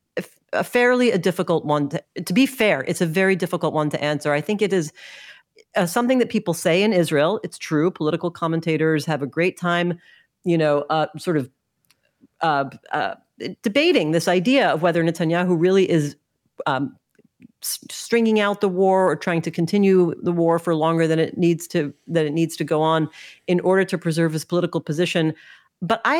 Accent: American